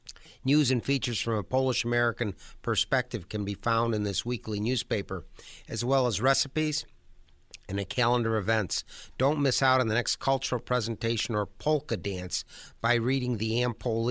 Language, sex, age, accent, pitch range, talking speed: English, male, 50-69, American, 110-125 Hz, 155 wpm